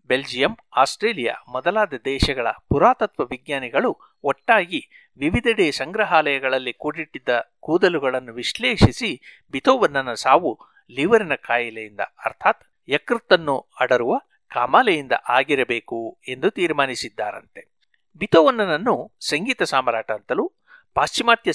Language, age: Kannada, 60-79